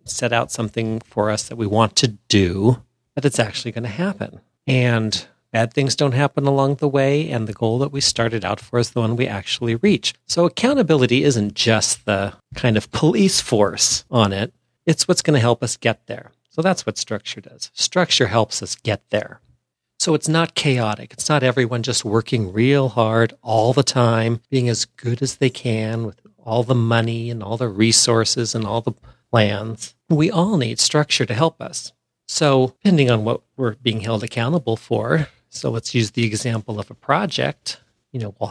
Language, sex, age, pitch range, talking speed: English, male, 40-59, 115-135 Hz, 195 wpm